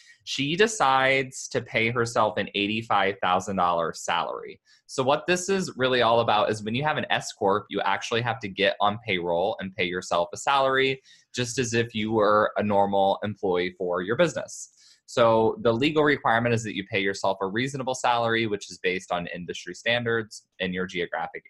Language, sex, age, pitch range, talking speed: English, male, 20-39, 100-135 Hz, 180 wpm